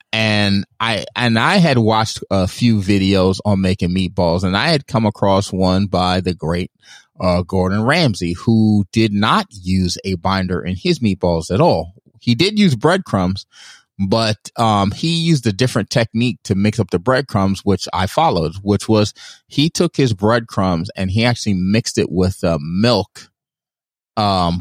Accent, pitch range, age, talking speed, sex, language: American, 95-115 Hz, 30-49, 170 wpm, male, English